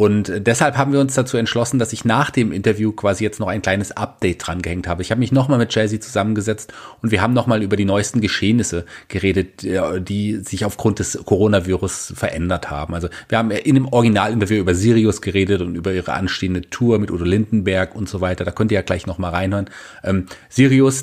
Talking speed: 205 wpm